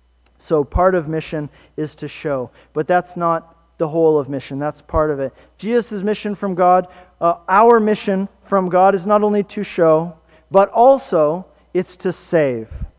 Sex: male